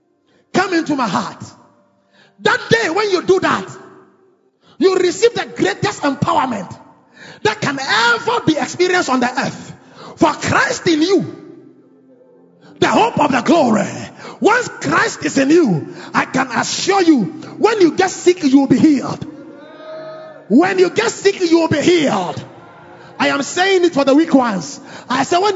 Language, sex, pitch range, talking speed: English, male, 280-380 Hz, 160 wpm